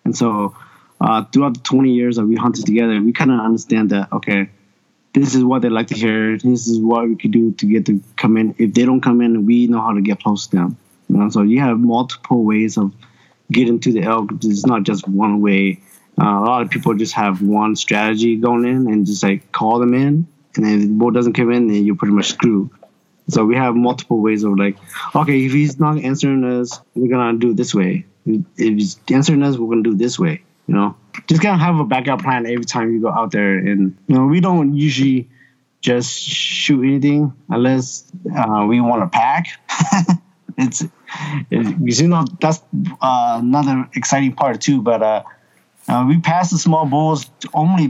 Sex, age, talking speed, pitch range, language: male, 20-39, 220 wpm, 110-135 Hz, English